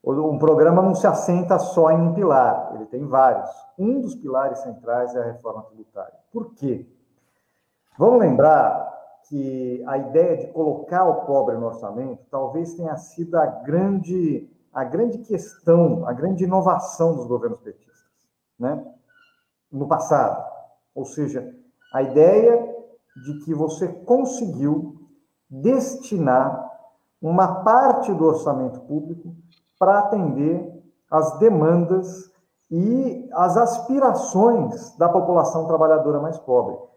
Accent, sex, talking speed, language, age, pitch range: Brazilian, male, 120 wpm, Portuguese, 50-69, 145-205 Hz